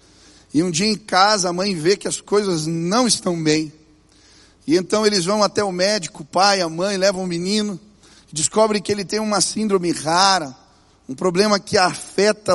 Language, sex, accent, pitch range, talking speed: Portuguese, male, Brazilian, 175-230 Hz, 185 wpm